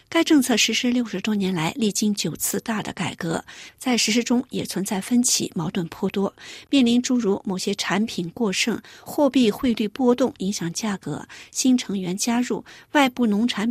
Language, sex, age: Chinese, female, 50-69